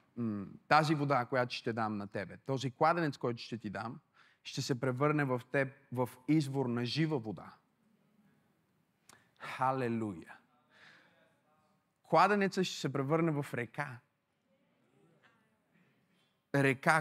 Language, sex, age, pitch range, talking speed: Bulgarian, male, 30-49, 125-155 Hz, 110 wpm